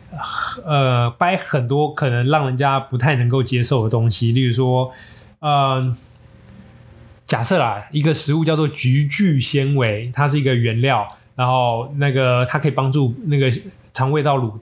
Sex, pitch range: male, 125-150 Hz